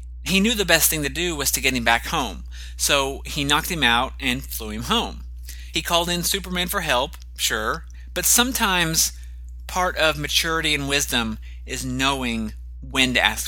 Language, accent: English, American